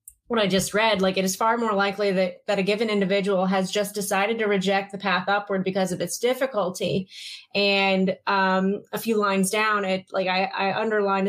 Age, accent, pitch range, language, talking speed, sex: 20-39, American, 190-225 Hz, English, 200 wpm, female